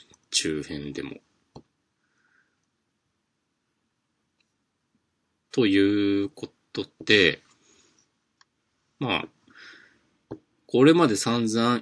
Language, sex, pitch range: Japanese, male, 85-120 Hz